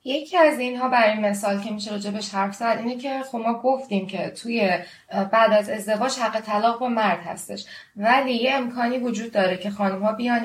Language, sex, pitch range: Persian, female, 190-230 Hz